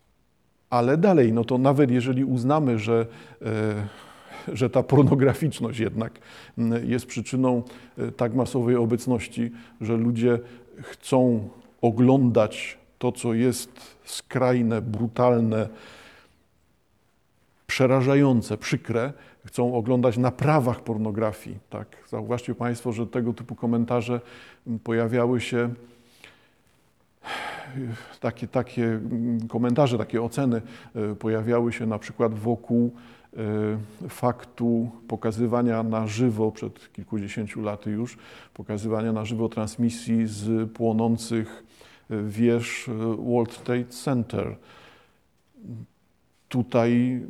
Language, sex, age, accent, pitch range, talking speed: Polish, male, 50-69, native, 115-125 Hz, 90 wpm